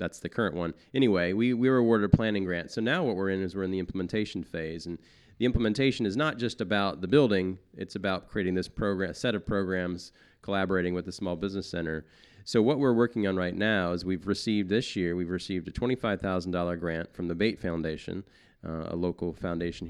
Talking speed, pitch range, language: 215 wpm, 90-110 Hz, English